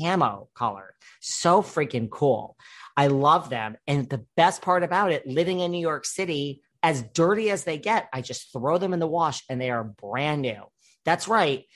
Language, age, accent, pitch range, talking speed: English, 40-59, American, 120-160 Hz, 195 wpm